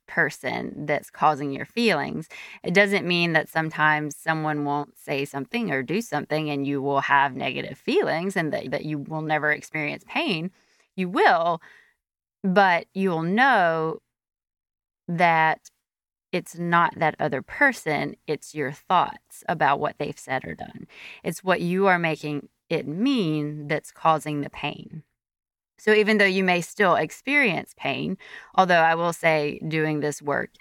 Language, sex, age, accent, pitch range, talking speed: English, female, 20-39, American, 145-170 Hz, 155 wpm